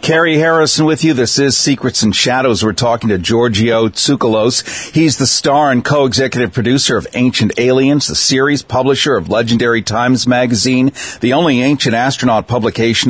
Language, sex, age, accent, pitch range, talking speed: English, male, 50-69, American, 115-140 Hz, 160 wpm